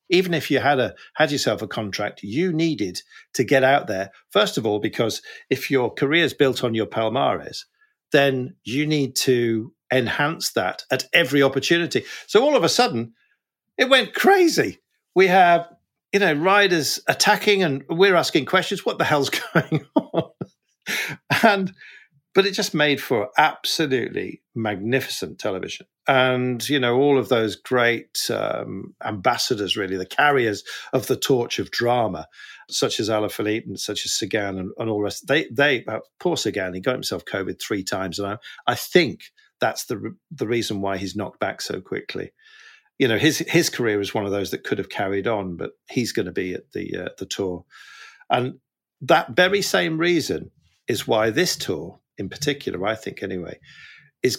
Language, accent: English, British